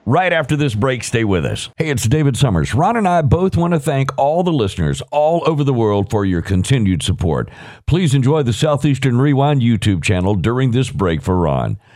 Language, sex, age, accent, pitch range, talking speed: English, male, 50-69, American, 115-160 Hz, 205 wpm